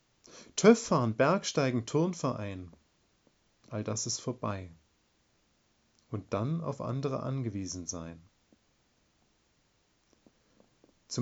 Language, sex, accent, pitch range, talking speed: German, male, German, 110-155 Hz, 75 wpm